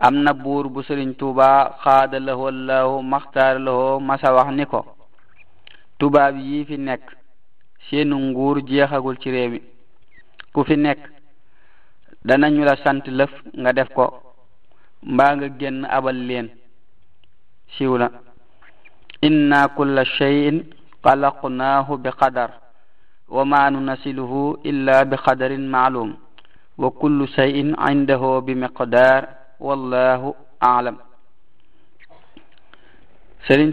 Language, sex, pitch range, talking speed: French, male, 130-140 Hz, 80 wpm